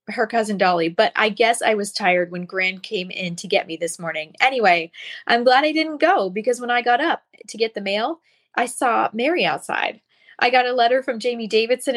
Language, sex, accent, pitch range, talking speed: English, female, American, 180-235 Hz, 220 wpm